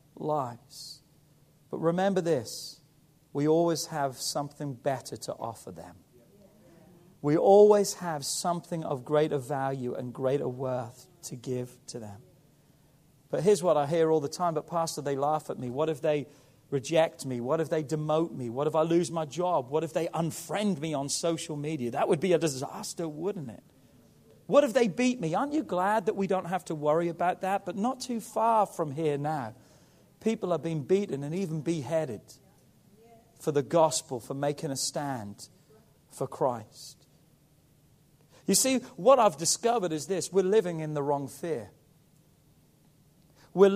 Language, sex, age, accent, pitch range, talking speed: English, male, 40-59, British, 145-180 Hz, 170 wpm